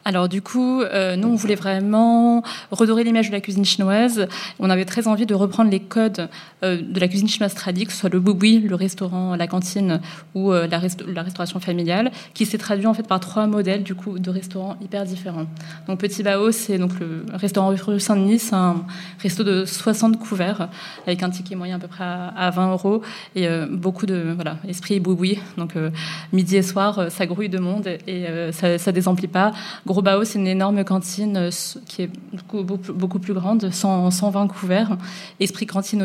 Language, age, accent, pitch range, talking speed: French, 20-39, French, 180-200 Hz, 205 wpm